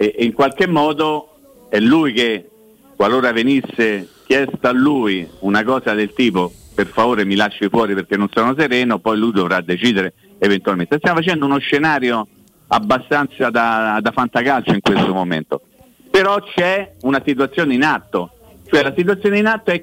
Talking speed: 155 wpm